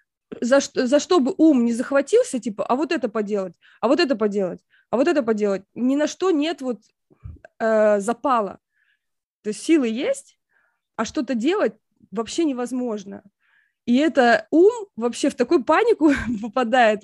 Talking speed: 155 wpm